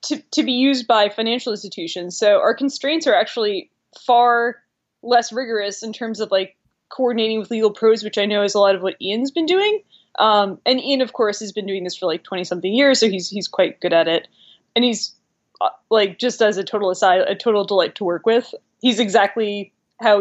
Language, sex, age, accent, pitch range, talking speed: English, female, 20-39, American, 195-240 Hz, 215 wpm